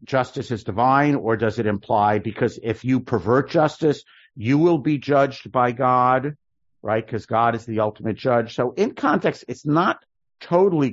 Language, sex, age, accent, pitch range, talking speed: English, male, 50-69, American, 105-130 Hz, 170 wpm